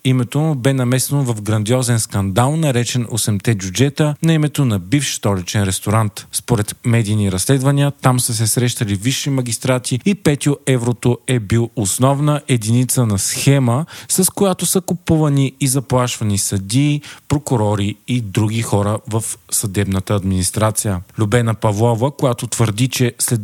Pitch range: 110-135 Hz